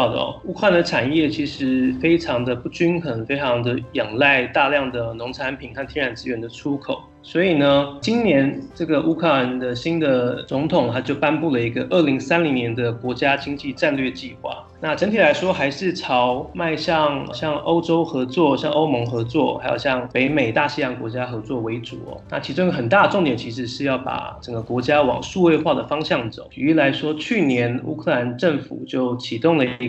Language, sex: Chinese, male